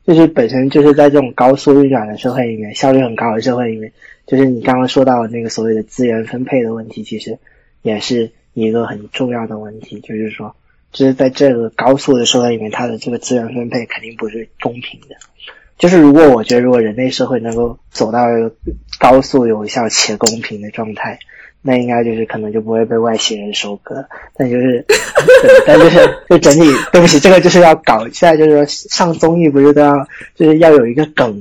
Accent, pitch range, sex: native, 115-145 Hz, male